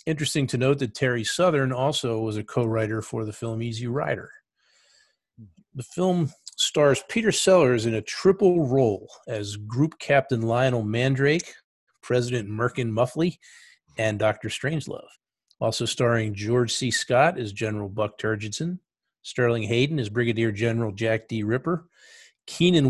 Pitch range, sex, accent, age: 115-145 Hz, male, American, 50-69